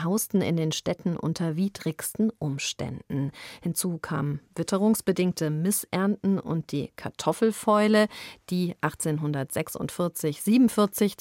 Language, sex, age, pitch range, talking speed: German, female, 40-59, 160-210 Hz, 85 wpm